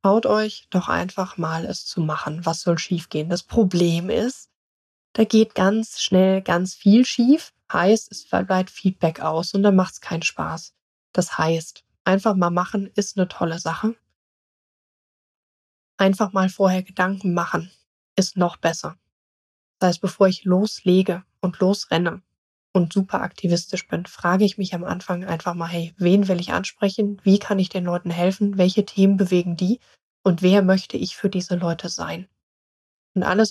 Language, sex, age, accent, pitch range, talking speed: German, female, 20-39, German, 175-200 Hz, 165 wpm